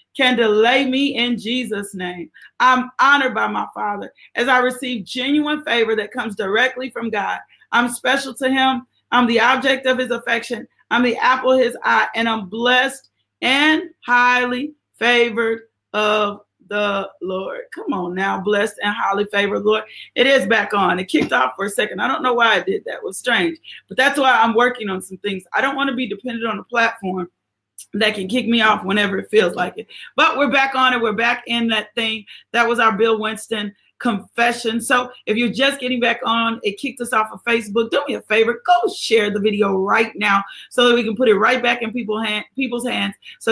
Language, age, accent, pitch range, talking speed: English, 40-59, American, 220-260 Hz, 210 wpm